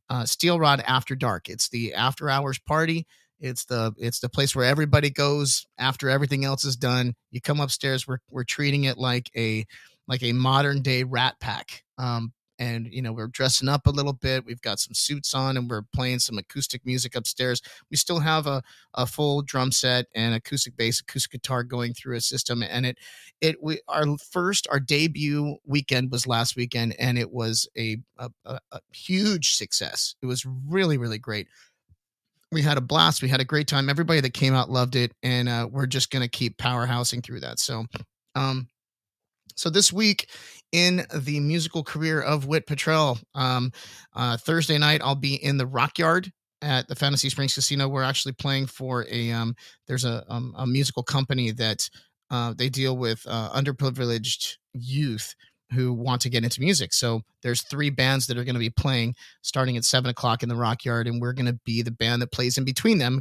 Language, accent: English, American